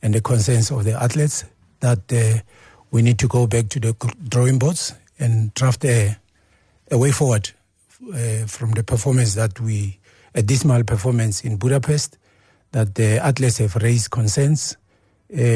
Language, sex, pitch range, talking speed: English, male, 110-130 Hz, 160 wpm